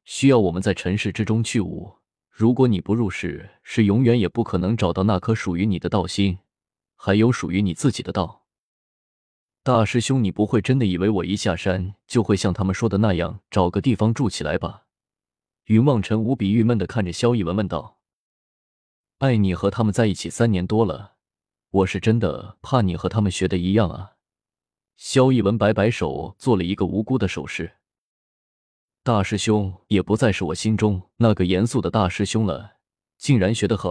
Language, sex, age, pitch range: Chinese, male, 20-39, 95-115 Hz